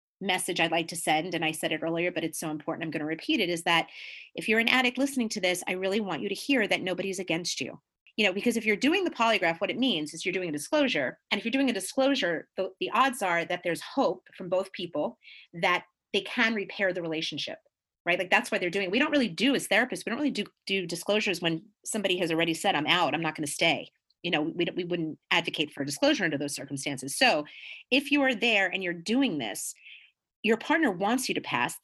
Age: 30-49